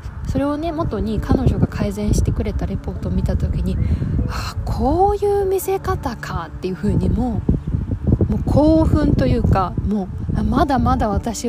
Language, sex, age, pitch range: Japanese, female, 20-39, 200-315 Hz